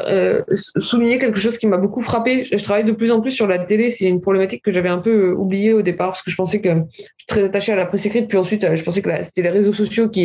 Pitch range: 180-215 Hz